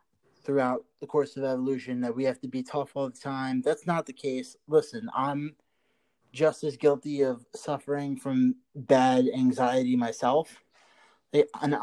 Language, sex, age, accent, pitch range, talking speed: English, male, 20-39, American, 125-145 Hz, 155 wpm